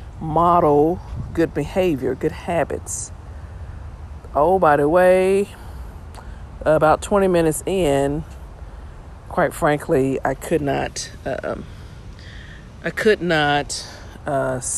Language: English